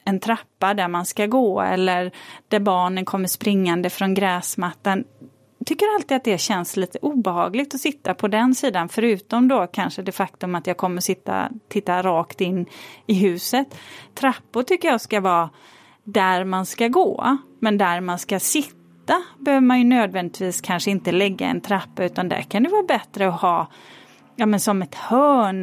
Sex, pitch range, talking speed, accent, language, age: female, 185-250 Hz, 180 wpm, native, Swedish, 30-49